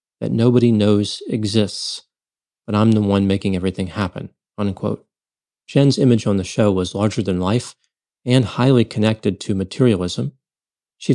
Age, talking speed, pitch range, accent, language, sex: 40-59, 145 wpm, 100-120 Hz, American, English, male